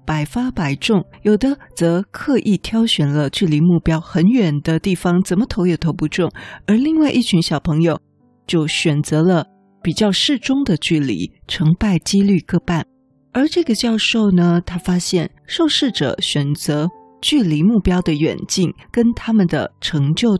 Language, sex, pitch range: Chinese, female, 160-220 Hz